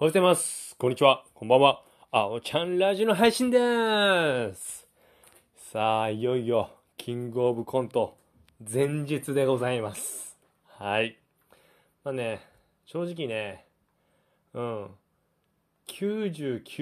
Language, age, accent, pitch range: Japanese, 20-39, native, 120-175 Hz